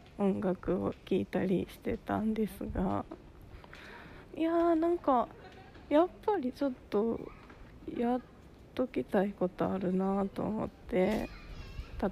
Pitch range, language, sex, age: 180-225 Hz, Japanese, female, 20-39